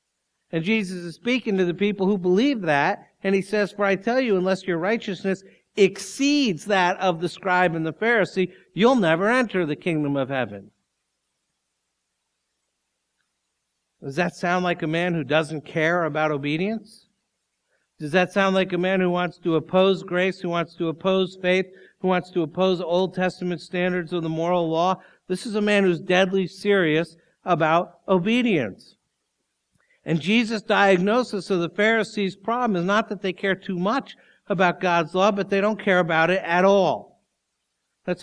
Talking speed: 170 wpm